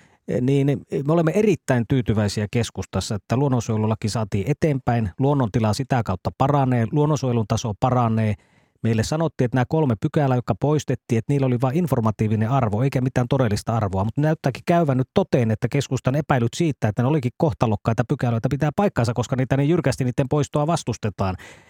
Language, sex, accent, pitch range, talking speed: Finnish, male, native, 120-150 Hz, 160 wpm